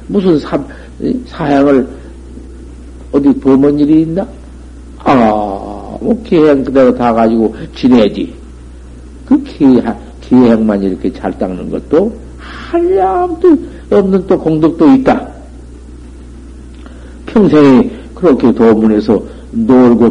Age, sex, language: 50-69, male, Korean